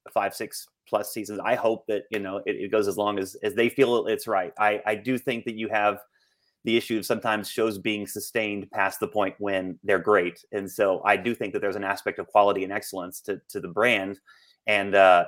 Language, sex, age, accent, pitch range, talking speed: English, male, 30-49, American, 100-120 Hz, 230 wpm